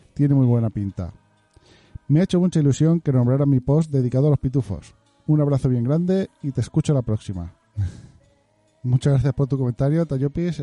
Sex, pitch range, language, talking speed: male, 110-135 Hz, Spanish, 180 wpm